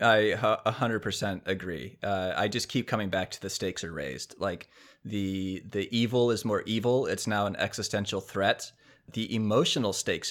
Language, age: English, 20-39